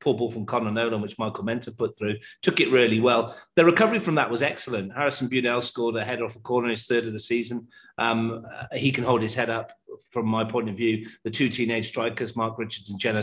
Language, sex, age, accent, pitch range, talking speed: English, male, 40-59, British, 110-130 Hz, 245 wpm